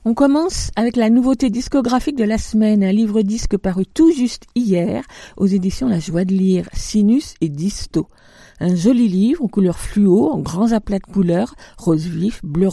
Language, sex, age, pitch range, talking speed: French, female, 50-69, 180-230 Hz, 185 wpm